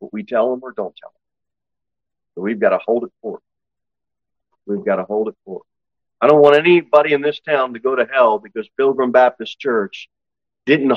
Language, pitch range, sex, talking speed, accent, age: English, 120-190 Hz, male, 200 wpm, American, 40-59